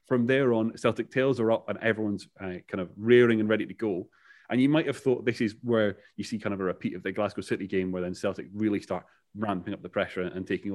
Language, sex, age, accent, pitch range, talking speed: English, male, 30-49, British, 95-115 Hz, 260 wpm